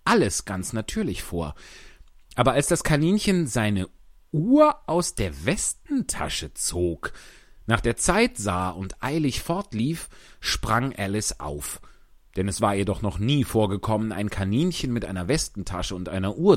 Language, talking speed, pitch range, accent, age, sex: German, 140 wpm, 95-140 Hz, German, 40-59, male